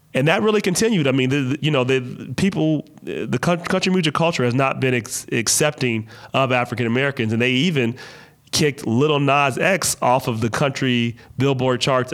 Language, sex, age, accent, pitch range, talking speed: English, male, 30-49, American, 115-135 Hz, 170 wpm